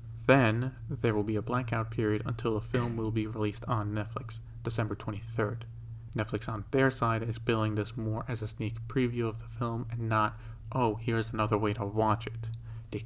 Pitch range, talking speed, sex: 110-120 Hz, 195 wpm, male